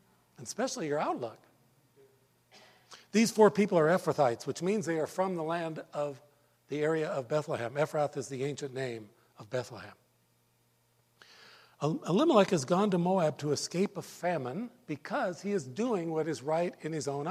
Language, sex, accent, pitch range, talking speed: English, male, American, 130-180 Hz, 165 wpm